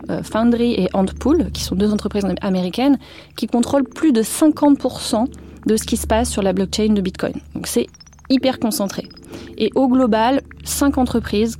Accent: French